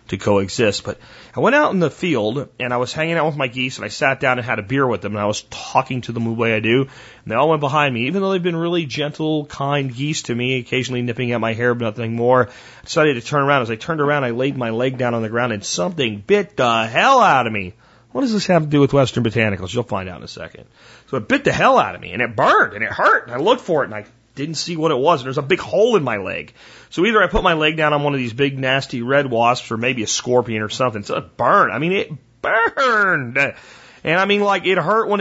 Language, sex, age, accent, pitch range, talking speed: English, male, 30-49, American, 120-155 Hz, 290 wpm